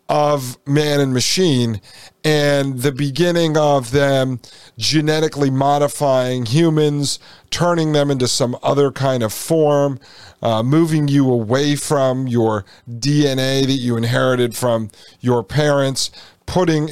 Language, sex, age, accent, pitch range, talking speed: English, male, 40-59, American, 120-145 Hz, 120 wpm